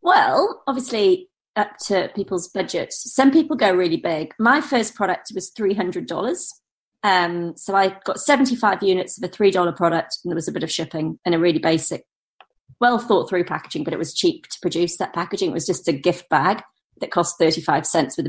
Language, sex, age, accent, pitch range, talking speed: English, female, 30-49, British, 175-215 Hz, 190 wpm